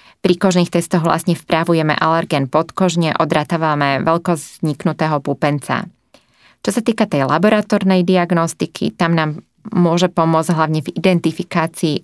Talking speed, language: 125 wpm, Slovak